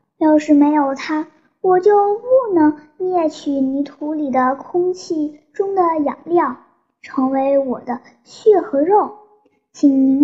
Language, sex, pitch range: Chinese, male, 265-370 Hz